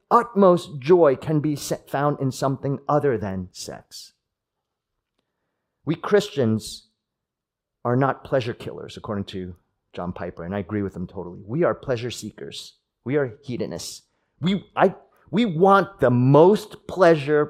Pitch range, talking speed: 110-180 Hz, 135 wpm